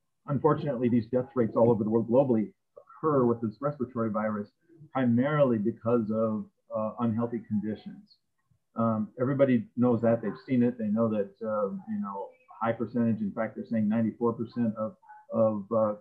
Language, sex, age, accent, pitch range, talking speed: English, male, 40-59, American, 110-140 Hz, 160 wpm